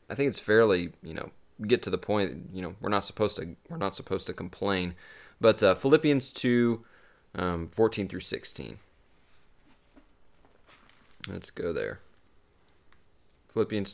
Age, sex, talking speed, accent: 30-49, male, 140 wpm, American